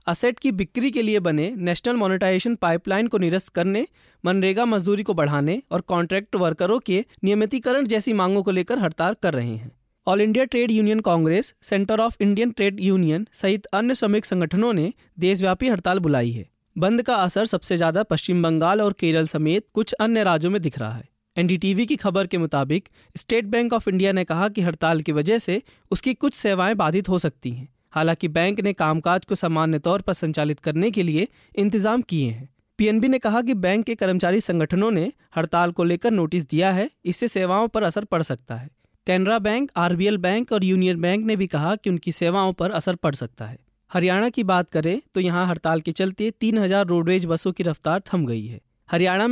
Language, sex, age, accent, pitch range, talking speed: Hindi, male, 20-39, native, 165-215 Hz, 195 wpm